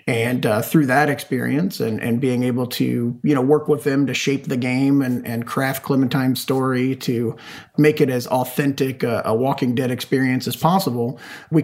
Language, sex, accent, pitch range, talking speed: English, male, American, 125-150 Hz, 190 wpm